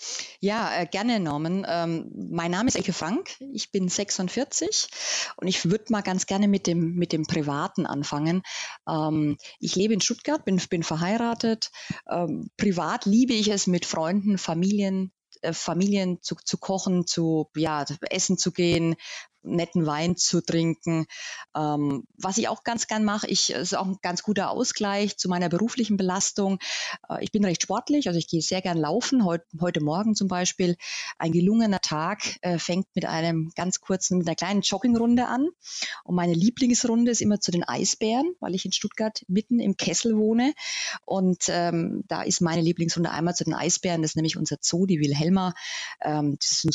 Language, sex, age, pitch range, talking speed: German, female, 30-49, 165-210 Hz, 180 wpm